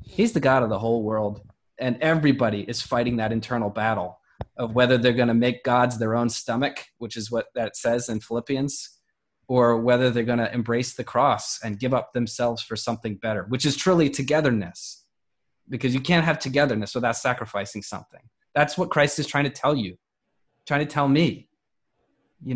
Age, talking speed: 20-39, 190 wpm